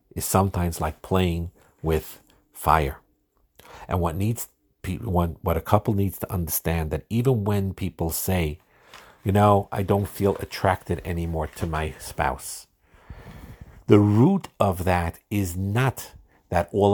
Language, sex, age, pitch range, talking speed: English, male, 50-69, 80-100 Hz, 135 wpm